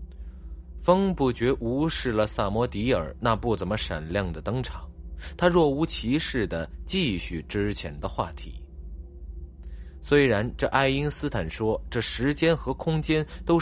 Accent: native